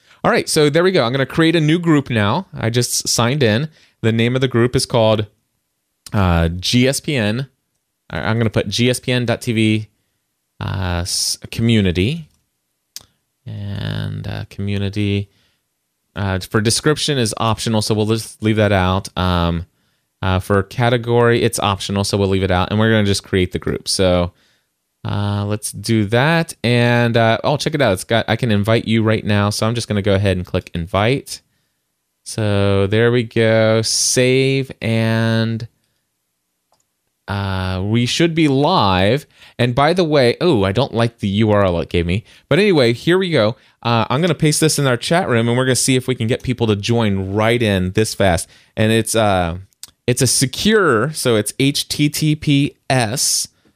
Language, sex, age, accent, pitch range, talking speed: English, male, 20-39, American, 100-125 Hz, 175 wpm